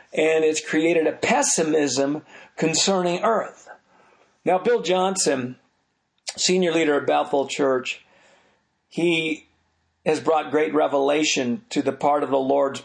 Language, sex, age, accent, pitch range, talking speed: English, male, 50-69, American, 140-165 Hz, 120 wpm